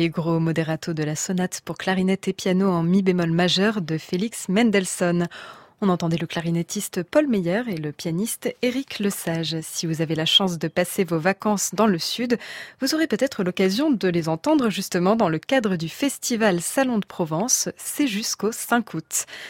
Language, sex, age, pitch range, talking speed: French, female, 20-39, 170-225 Hz, 180 wpm